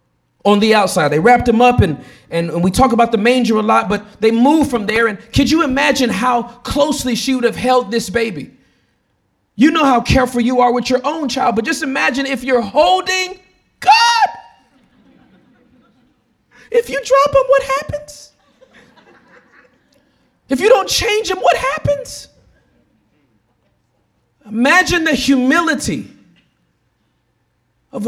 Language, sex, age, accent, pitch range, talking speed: English, male, 40-59, American, 170-265 Hz, 145 wpm